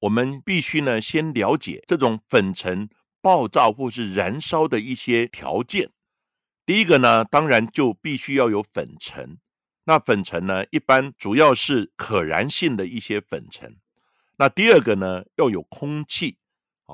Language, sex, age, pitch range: Chinese, male, 60-79, 95-160 Hz